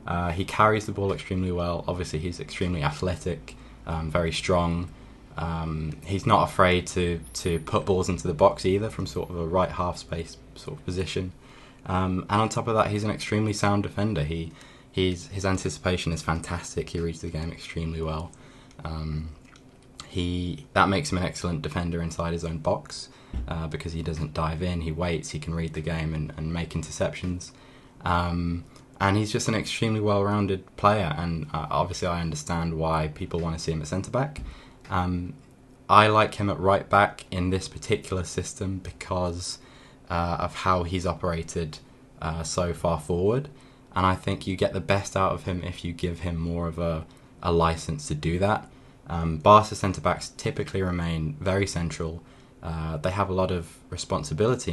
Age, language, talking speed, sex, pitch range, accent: 20-39, English, 180 wpm, male, 80-95 Hz, British